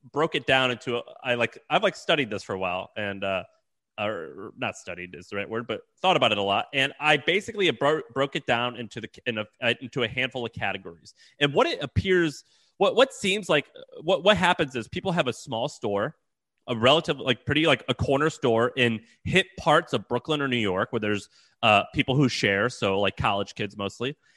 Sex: male